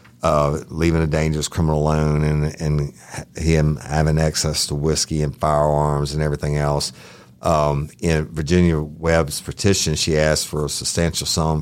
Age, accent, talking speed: 50-69, American, 150 wpm